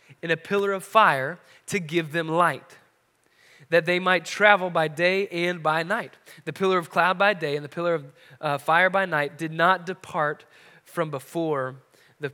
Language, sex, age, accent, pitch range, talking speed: English, male, 20-39, American, 165-225 Hz, 185 wpm